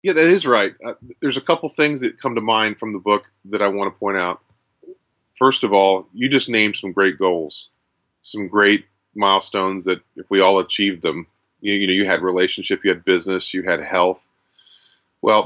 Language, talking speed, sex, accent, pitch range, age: English, 205 wpm, male, American, 95-115 Hz, 30-49